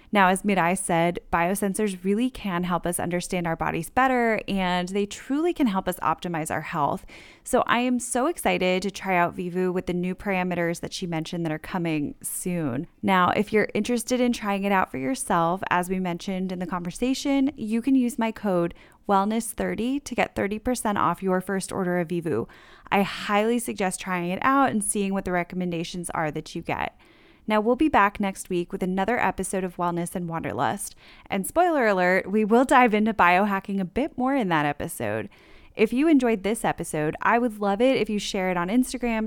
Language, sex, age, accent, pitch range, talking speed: English, female, 10-29, American, 180-230 Hz, 200 wpm